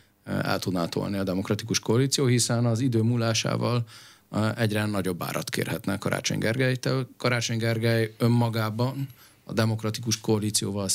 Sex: male